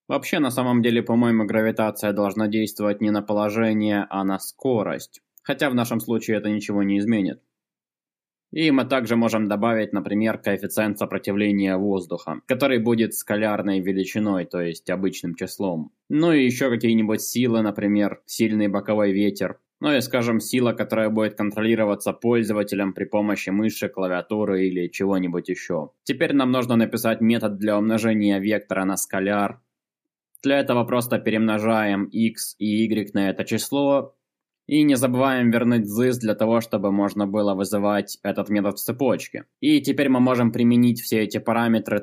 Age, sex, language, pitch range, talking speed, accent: 20-39, male, Russian, 100-120 Hz, 150 wpm, native